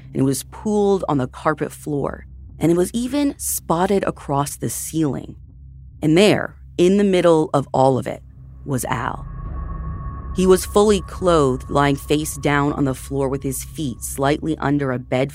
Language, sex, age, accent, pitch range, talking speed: English, female, 30-49, American, 130-175 Hz, 170 wpm